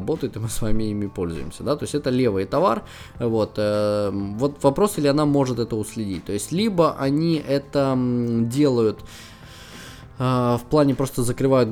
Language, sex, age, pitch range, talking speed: Russian, male, 20-39, 105-140 Hz, 165 wpm